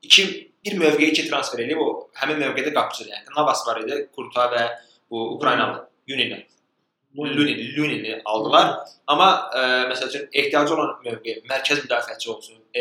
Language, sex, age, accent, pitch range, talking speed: English, male, 20-39, Turkish, 120-155 Hz, 145 wpm